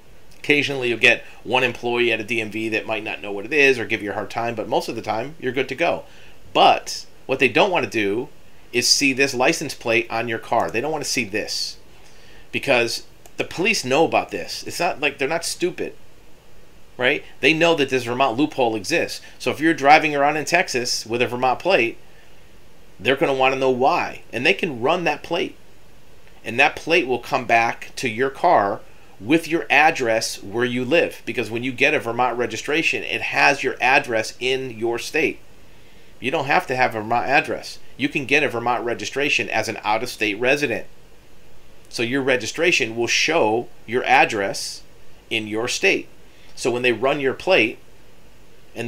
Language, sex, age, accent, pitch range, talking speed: English, male, 40-59, American, 115-135 Hz, 195 wpm